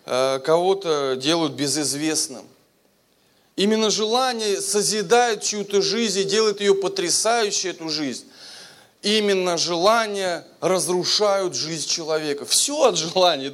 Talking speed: 100 wpm